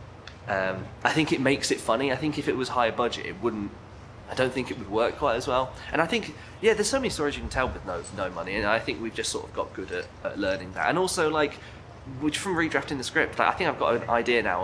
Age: 20-39